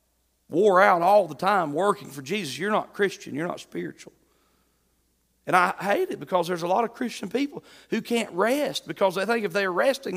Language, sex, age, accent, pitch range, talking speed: English, male, 40-59, American, 170-270 Hz, 200 wpm